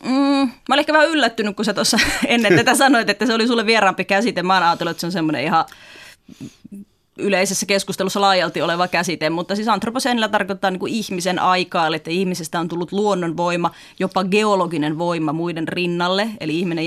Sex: female